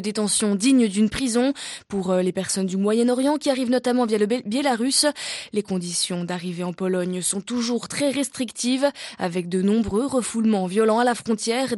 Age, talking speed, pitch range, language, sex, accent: 20-39, 170 wpm, 200-255 Hz, French, female, French